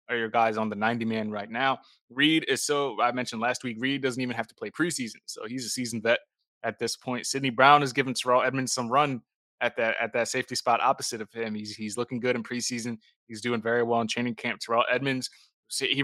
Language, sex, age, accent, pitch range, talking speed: English, male, 20-39, American, 115-130 Hz, 235 wpm